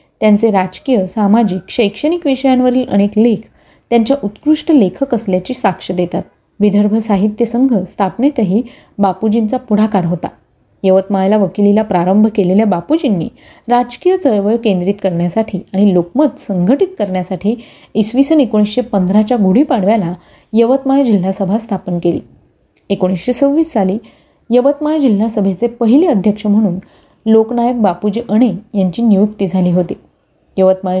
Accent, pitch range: native, 195-250 Hz